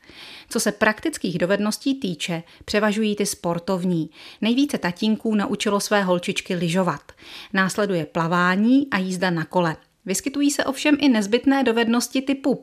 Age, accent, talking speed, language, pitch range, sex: 30-49, native, 130 wpm, Czech, 175-230 Hz, female